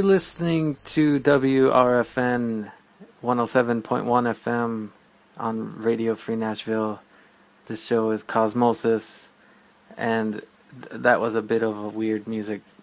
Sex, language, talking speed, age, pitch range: male, English, 105 wpm, 20-39, 110-130 Hz